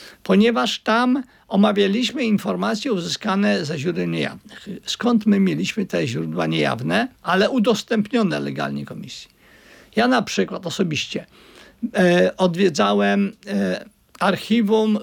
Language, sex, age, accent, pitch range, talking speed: Polish, male, 50-69, native, 200-245 Hz, 95 wpm